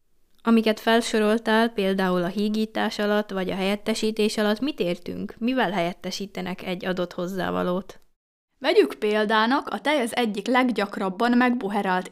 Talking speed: 125 wpm